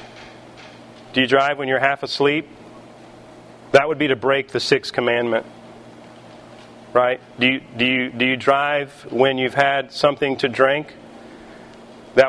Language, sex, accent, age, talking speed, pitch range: English, male, American, 40-59, 130 wpm, 130-150 Hz